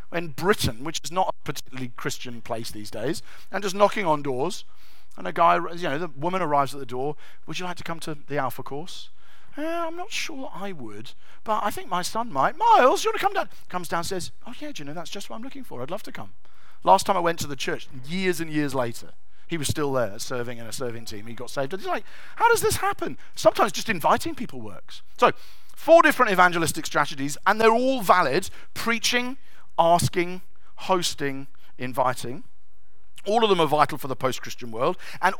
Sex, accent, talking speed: male, British, 220 wpm